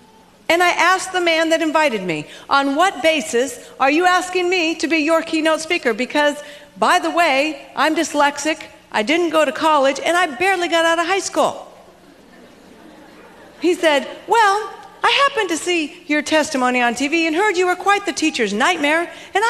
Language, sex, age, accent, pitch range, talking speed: English, female, 50-69, American, 280-355 Hz, 180 wpm